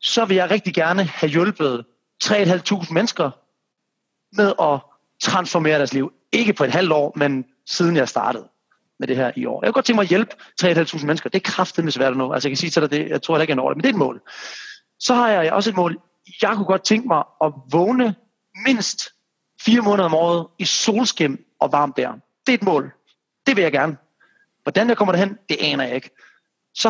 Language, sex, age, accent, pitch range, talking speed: Danish, male, 30-49, native, 155-215 Hz, 225 wpm